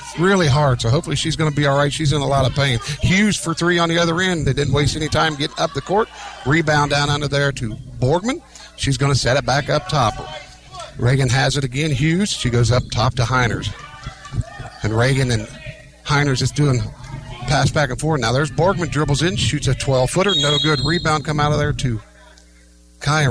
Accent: American